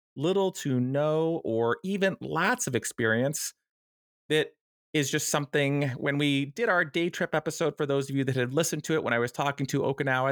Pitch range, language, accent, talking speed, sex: 130-170 Hz, English, American, 200 wpm, male